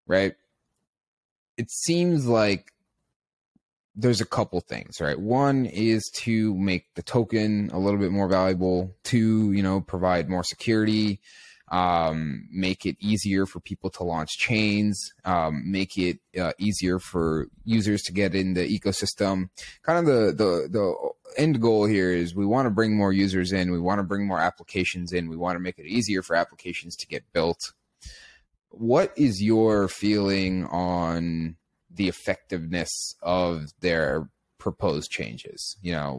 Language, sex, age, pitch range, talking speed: English, male, 20-39, 85-105 Hz, 155 wpm